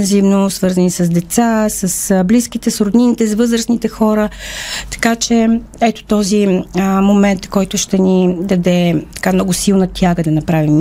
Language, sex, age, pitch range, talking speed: Bulgarian, female, 40-59, 195-230 Hz, 150 wpm